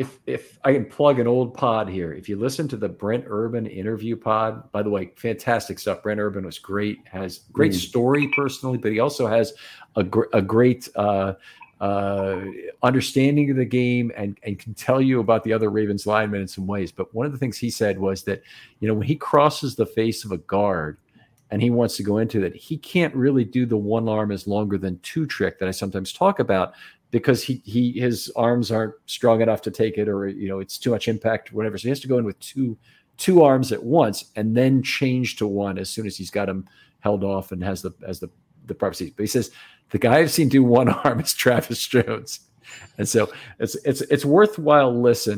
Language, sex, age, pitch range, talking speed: English, male, 50-69, 100-125 Hz, 230 wpm